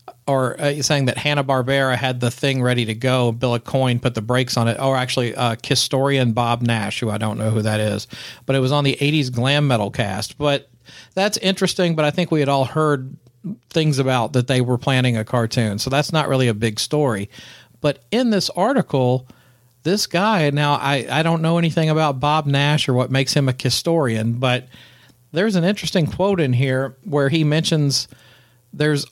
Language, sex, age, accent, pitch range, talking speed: English, male, 40-59, American, 125-150 Hz, 205 wpm